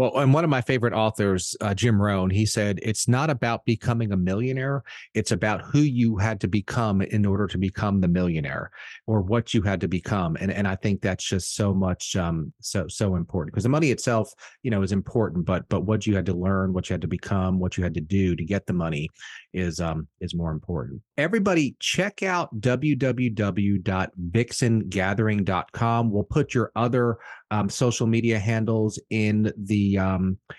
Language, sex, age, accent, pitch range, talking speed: English, male, 30-49, American, 95-120 Hz, 190 wpm